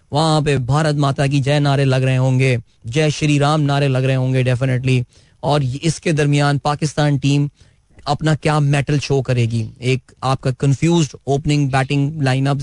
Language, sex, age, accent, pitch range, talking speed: Hindi, male, 20-39, native, 130-155 Hz, 160 wpm